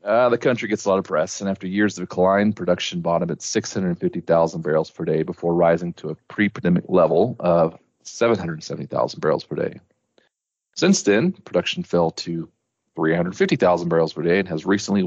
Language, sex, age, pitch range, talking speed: English, male, 40-59, 80-105 Hz, 170 wpm